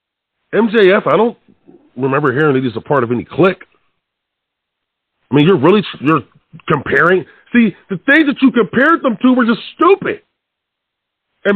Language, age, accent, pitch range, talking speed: English, 40-59, American, 170-240 Hz, 155 wpm